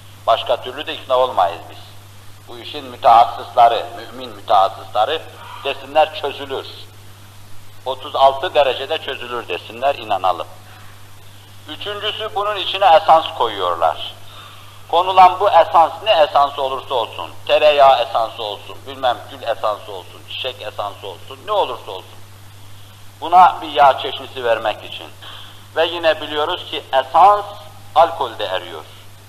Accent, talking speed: native, 115 wpm